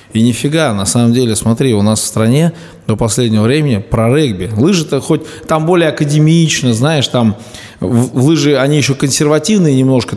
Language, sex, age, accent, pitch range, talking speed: Russian, male, 20-39, native, 105-135 Hz, 160 wpm